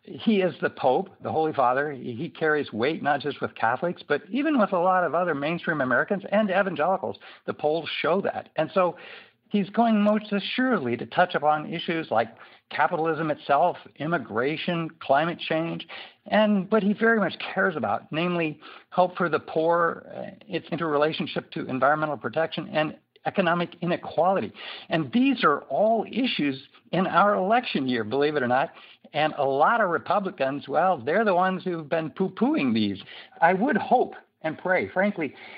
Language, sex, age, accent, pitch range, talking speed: English, male, 60-79, American, 150-200 Hz, 165 wpm